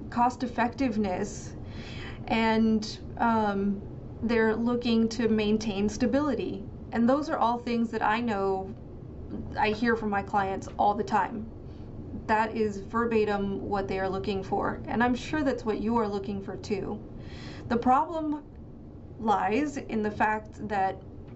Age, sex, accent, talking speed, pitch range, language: 30-49, female, American, 140 wpm, 205-235 Hz, English